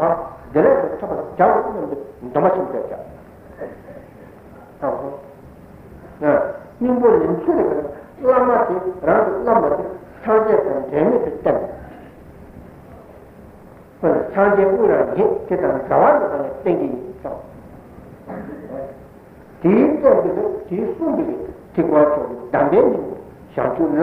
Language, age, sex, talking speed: Italian, 60-79, male, 70 wpm